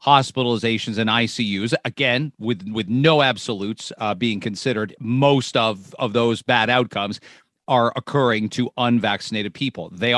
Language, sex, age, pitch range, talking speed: English, male, 40-59, 115-140 Hz, 135 wpm